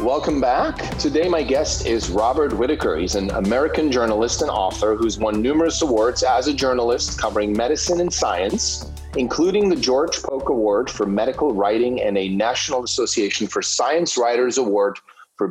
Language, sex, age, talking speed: English, male, 30-49, 165 wpm